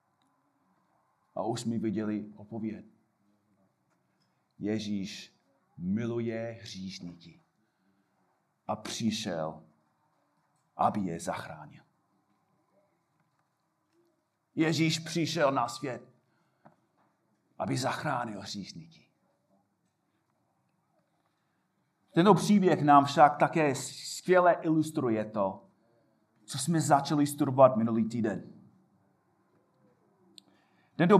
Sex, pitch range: male, 115-165 Hz